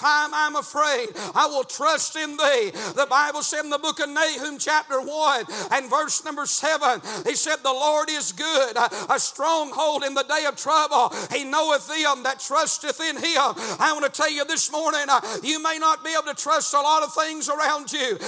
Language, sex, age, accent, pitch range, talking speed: English, male, 50-69, American, 285-330 Hz, 205 wpm